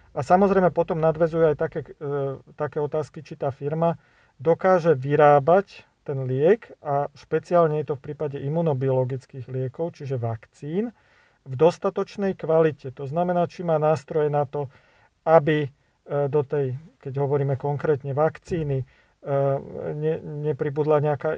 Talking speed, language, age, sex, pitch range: 125 wpm, Slovak, 40-59, male, 135-160 Hz